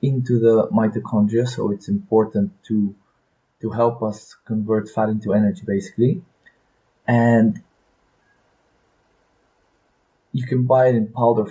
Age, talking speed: 20-39, 115 wpm